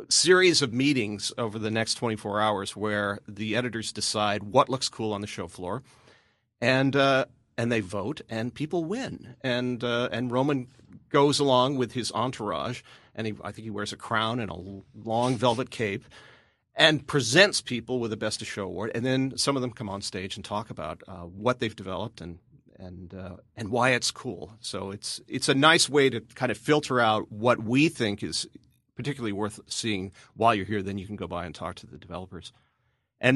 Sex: male